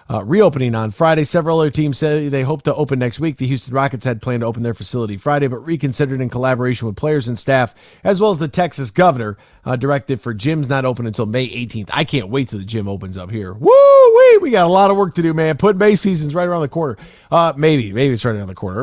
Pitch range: 120-165 Hz